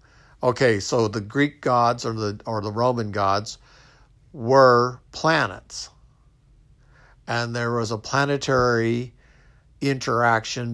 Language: English